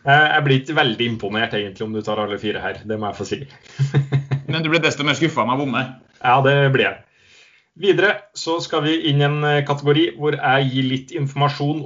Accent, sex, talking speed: Norwegian, male, 195 wpm